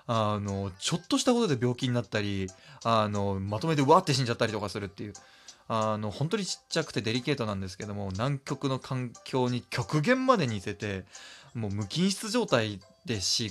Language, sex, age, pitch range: Japanese, male, 20-39, 105-155 Hz